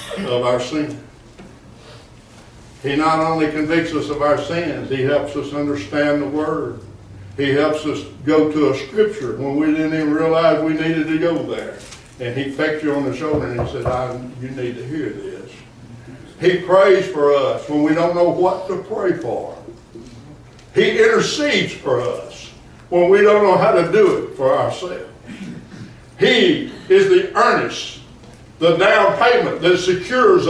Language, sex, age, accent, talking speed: English, male, 60-79, American, 165 wpm